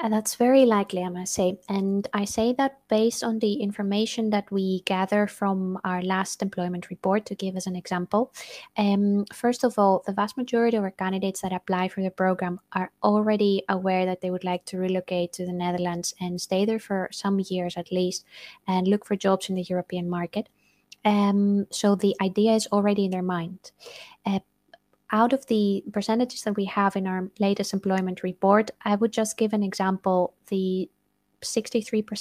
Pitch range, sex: 185-210 Hz, female